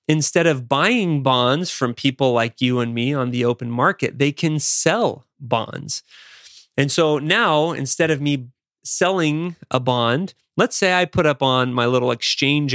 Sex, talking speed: male, 170 wpm